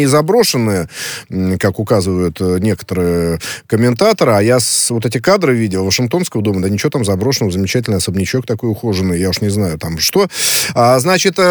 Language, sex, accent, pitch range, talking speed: Russian, male, native, 110-150 Hz, 145 wpm